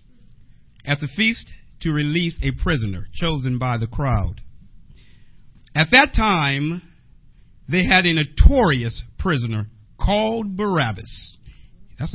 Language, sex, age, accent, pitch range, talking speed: English, male, 50-69, American, 115-165 Hz, 110 wpm